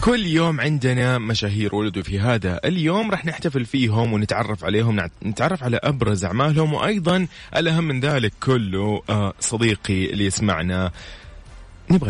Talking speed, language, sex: 130 wpm, English, male